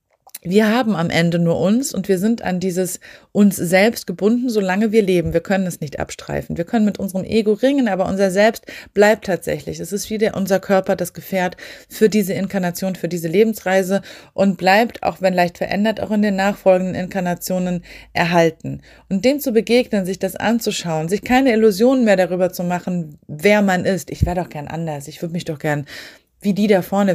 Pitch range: 175-220 Hz